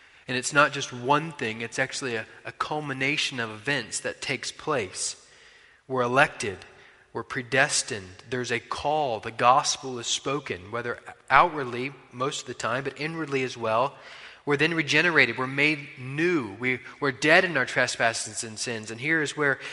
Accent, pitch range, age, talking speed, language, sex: American, 125-150 Hz, 20-39, 165 wpm, English, male